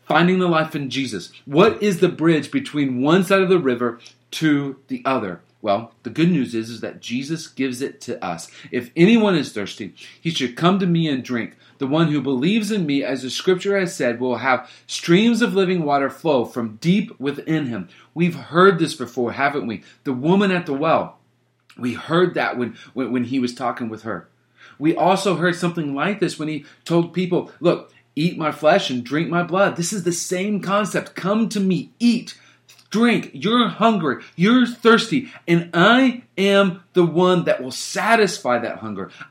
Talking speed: 195 wpm